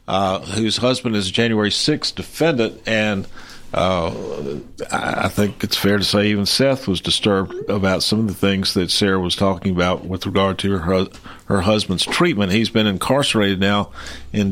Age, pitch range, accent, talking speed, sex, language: 50-69, 90-105 Hz, American, 175 wpm, male, English